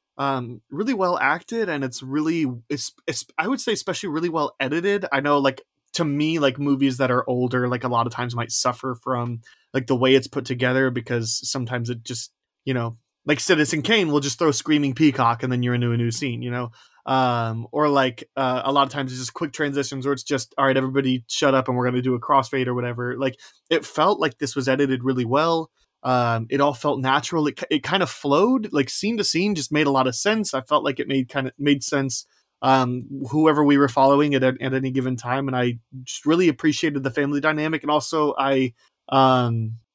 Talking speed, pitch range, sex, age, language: 230 wpm, 125-150 Hz, male, 20-39, English